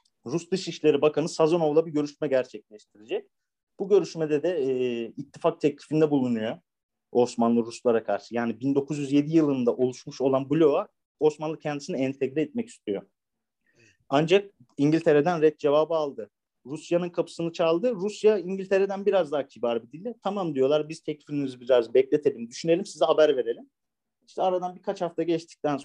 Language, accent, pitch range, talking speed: Turkish, native, 135-175 Hz, 135 wpm